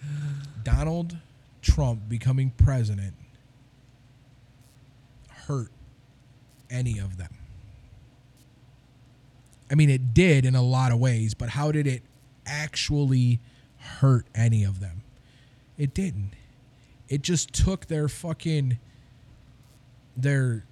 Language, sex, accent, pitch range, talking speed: English, male, American, 120-135 Hz, 100 wpm